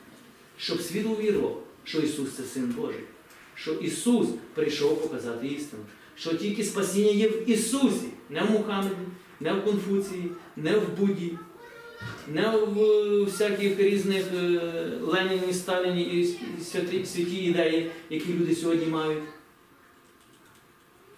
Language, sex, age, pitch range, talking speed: Ukrainian, male, 40-59, 170-240 Hz, 120 wpm